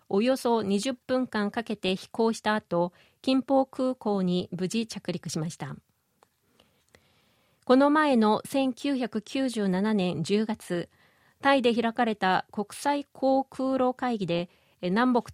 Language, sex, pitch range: Japanese, female, 195-255 Hz